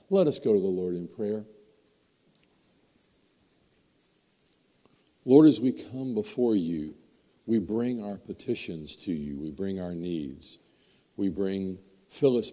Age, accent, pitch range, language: 50-69, American, 90-110 Hz, English